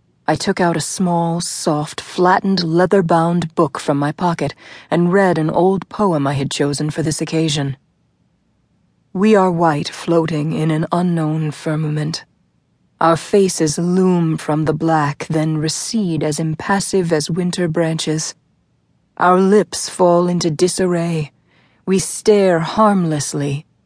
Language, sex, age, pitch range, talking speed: English, female, 30-49, 155-185 Hz, 130 wpm